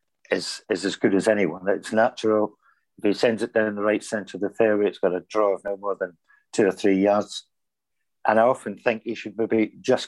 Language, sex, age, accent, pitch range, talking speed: English, male, 60-79, British, 100-115 Hz, 230 wpm